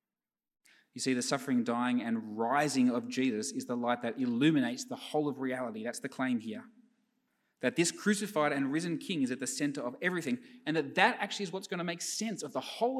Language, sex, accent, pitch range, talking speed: English, male, Australian, 130-215 Hz, 215 wpm